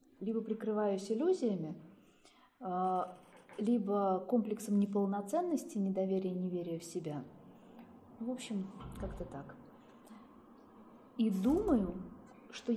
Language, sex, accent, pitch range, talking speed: Russian, female, native, 180-240 Hz, 85 wpm